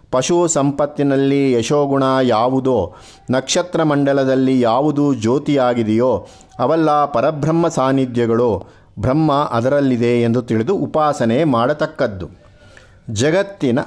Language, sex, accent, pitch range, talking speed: Kannada, male, native, 115-150 Hz, 80 wpm